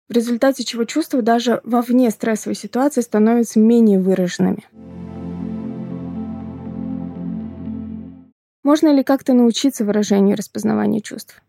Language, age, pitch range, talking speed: Russian, 20-39, 220-260 Hz, 105 wpm